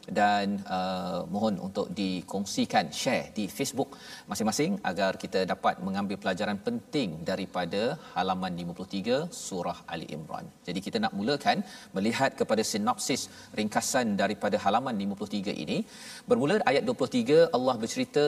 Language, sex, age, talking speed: Malayalam, male, 40-59, 130 wpm